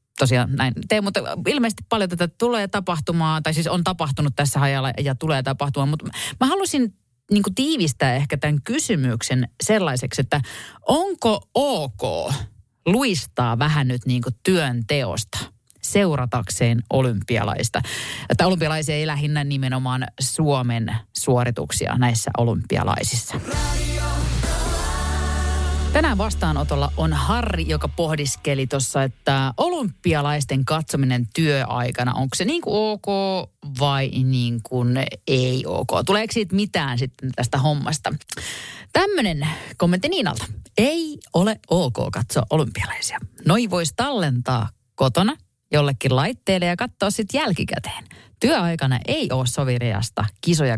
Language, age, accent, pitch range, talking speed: Finnish, 30-49, native, 120-170 Hz, 110 wpm